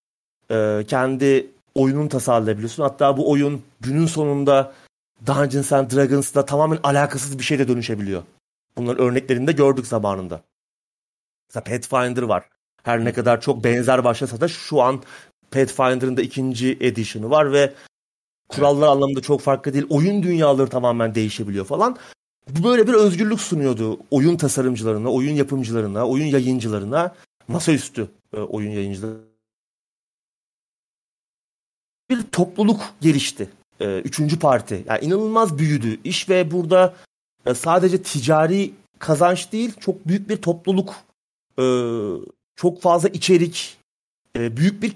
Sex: male